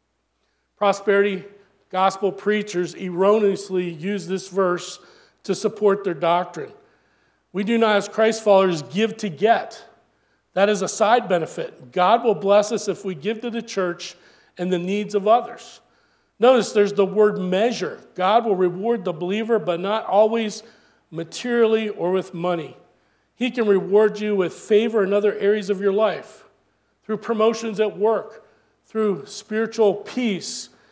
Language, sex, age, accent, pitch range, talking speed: English, male, 40-59, American, 180-215 Hz, 150 wpm